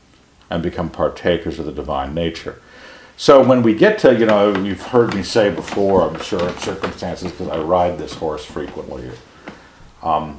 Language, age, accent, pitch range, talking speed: English, 60-79, American, 80-100 Hz, 175 wpm